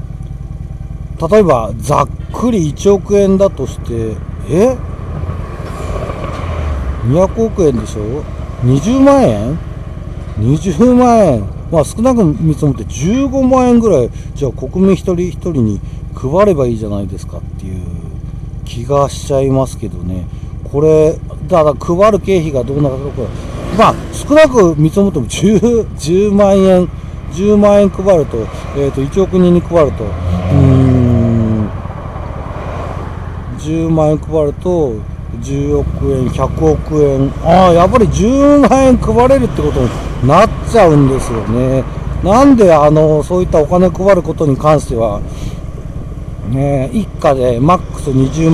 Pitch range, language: 120-190 Hz, Japanese